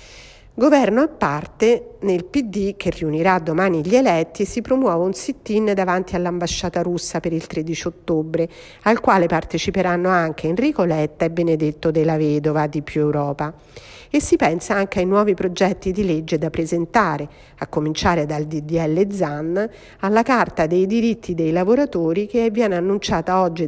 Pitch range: 160-210 Hz